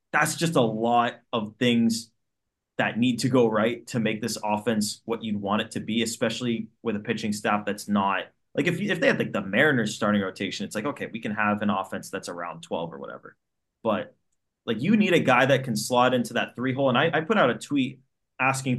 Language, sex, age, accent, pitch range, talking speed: English, male, 20-39, American, 110-135 Hz, 235 wpm